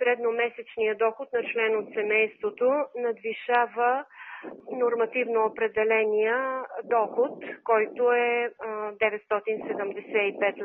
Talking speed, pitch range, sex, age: 75 wpm, 220-250 Hz, female, 40-59